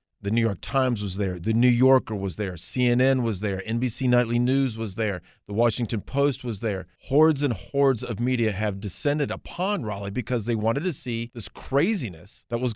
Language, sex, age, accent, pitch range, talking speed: English, male, 40-59, American, 110-160 Hz, 200 wpm